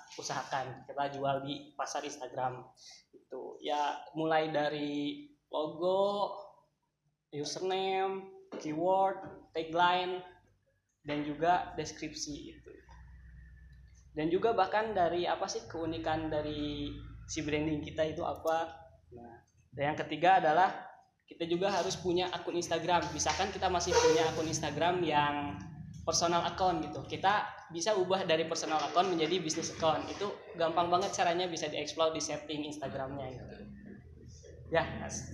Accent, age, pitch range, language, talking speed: native, 20-39, 145-175 Hz, Indonesian, 120 wpm